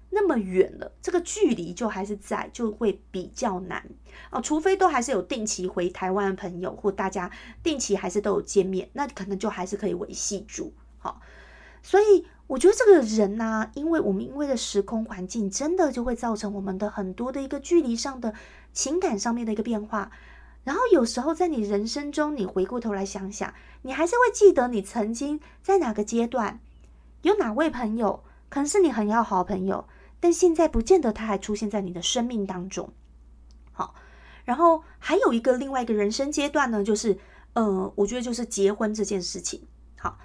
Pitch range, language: 200-300 Hz, Chinese